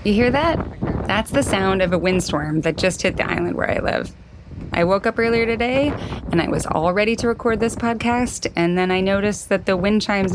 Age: 20-39